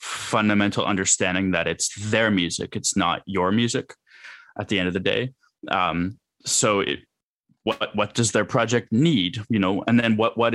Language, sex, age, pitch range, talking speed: English, male, 20-39, 95-110 Hz, 170 wpm